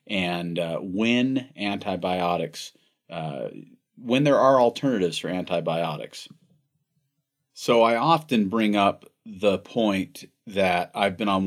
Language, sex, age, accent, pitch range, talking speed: English, male, 40-59, American, 95-115 Hz, 115 wpm